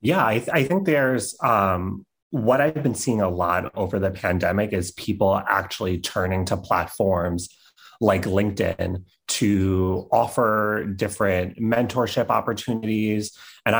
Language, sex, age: English, male, 30-49